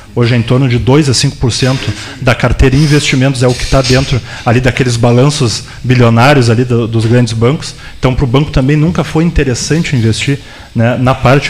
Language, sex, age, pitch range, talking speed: Portuguese, male, 20-39, 115-140 Hz, 200 wpm